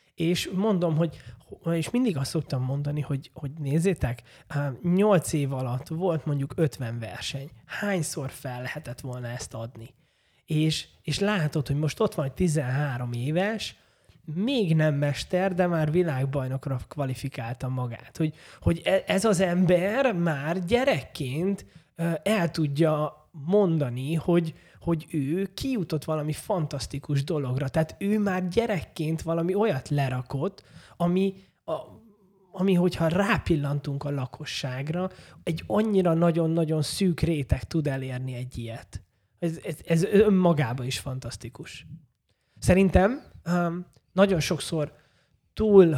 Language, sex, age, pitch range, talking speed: Hungarian, male, 20-39, 135-180 Hz, 120 wpm